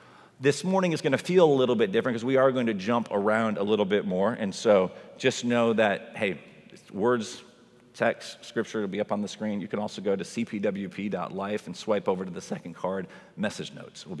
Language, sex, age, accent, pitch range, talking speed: English, male, 40-59, American, 115-145 Hz, 220 wpm